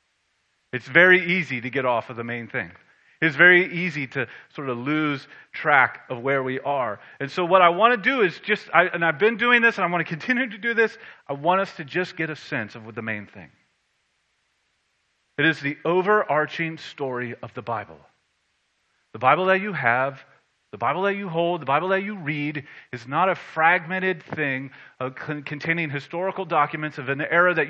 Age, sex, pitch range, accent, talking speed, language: 30-49, male, 125-175 Hz, American, 195 wpm, English